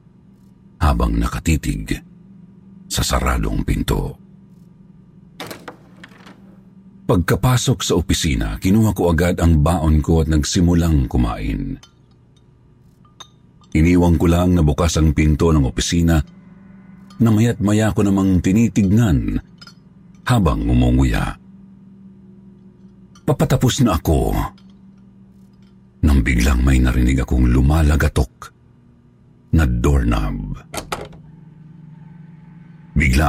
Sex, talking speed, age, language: male, 80 wpm, 50-69, Filipino